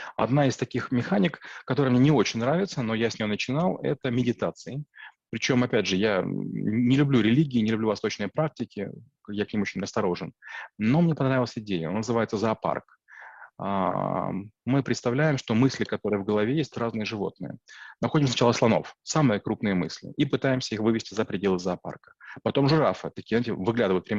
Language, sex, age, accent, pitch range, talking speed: Russian, male, 30-49, native, 110-140 Hz, 170 wpm